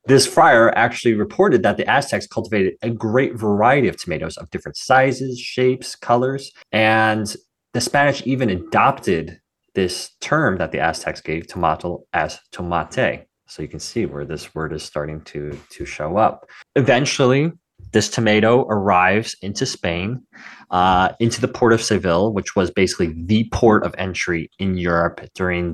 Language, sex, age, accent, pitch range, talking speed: English, male, 20-39, American, 85-115 Hz, 155 wpm